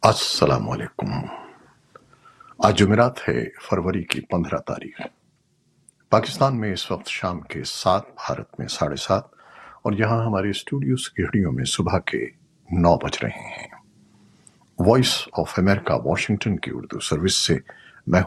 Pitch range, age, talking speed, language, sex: 95-120 Hz, 60-79, 135 wpm, Urdu, male